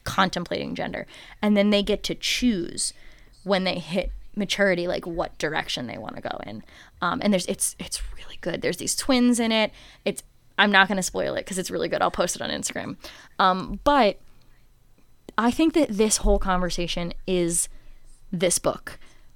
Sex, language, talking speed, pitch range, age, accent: female, English, 185 wpm, 175-210 Hz, 20-39, American